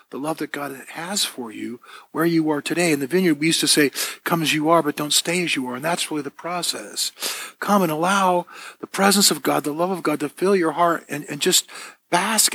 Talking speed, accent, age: 250 wpm, American, 50-69